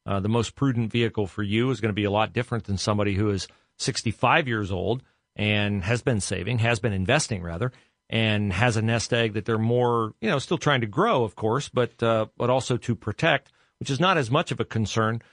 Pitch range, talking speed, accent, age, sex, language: 110-130 Hz, 230 wpm, American, 40-59, male, English